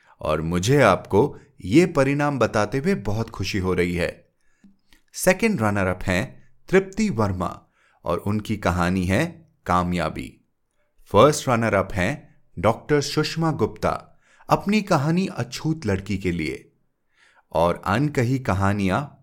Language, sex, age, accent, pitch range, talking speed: Hindi, male, 30-49, native, 95-150 Hz, 120 wpm